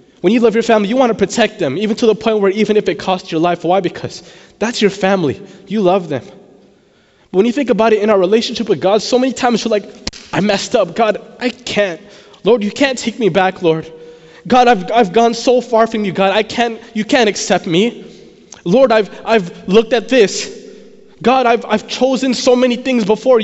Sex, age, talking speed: male, 20-39, 225 wpm